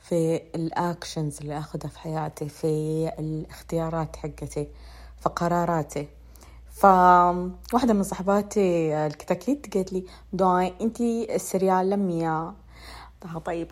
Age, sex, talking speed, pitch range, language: 20-39, female, 100 wpm, 145-185 Hz, Arabic